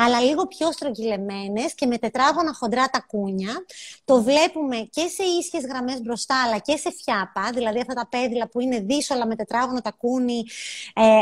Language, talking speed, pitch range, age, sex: Greek, 160 wpm, 230-290 Hz, 20-39, female